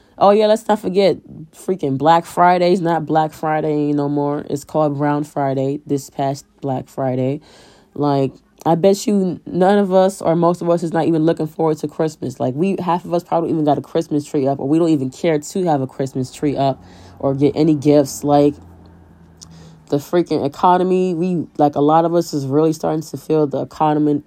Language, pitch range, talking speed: English, 135-160 Hz, 210 wpm